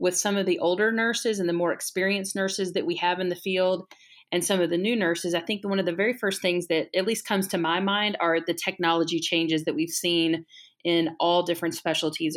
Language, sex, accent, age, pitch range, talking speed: English, female, American, 30-49, 165-190 Hz, 240 wpm